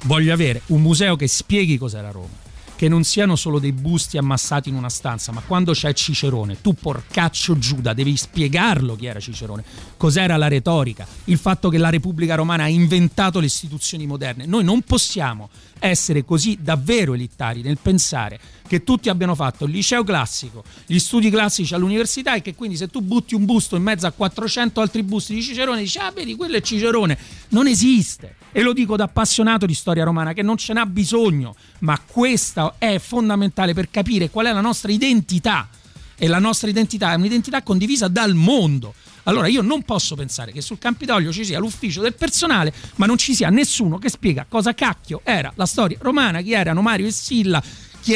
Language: Italian